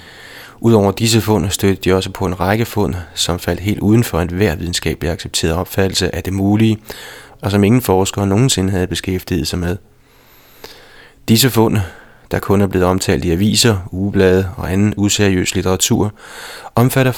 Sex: male